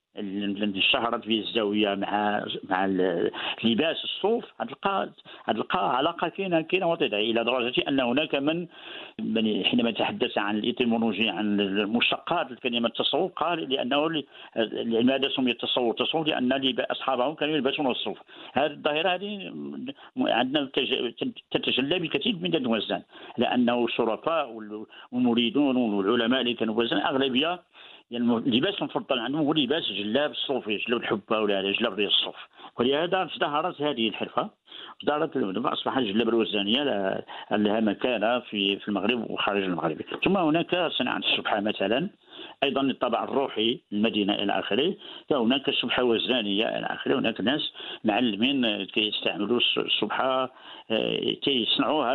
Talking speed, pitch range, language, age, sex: 130 wpm, 105-135 Hz, Arabic, 50-69, male